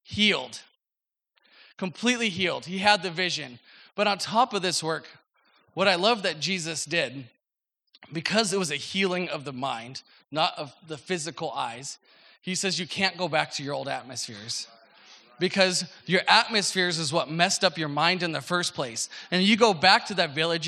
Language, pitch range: English, 165-205 Hz